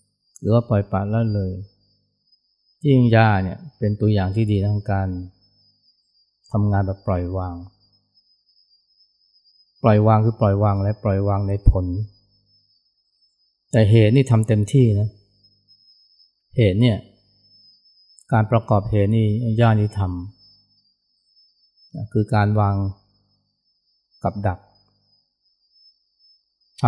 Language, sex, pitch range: Thai, male, 100-110 Hz